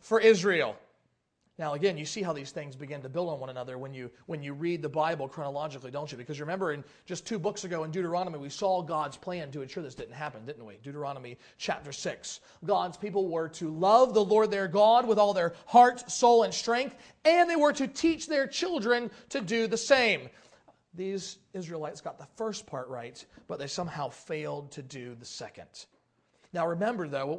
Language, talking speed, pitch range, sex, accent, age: English, 205 wpm, 160-240 Hz, male, American, 40-59